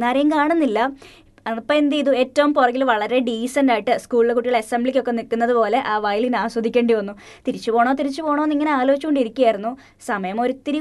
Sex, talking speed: female, 140 wpm